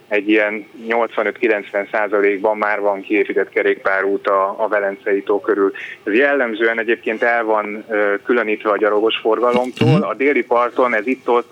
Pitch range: 100-130 Hz